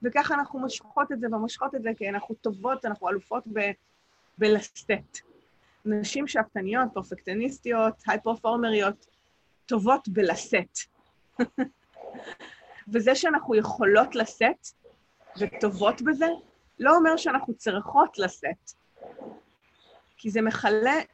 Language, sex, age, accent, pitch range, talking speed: English, female, 30-49, Israeli, 205-280 Hz, 95 wpm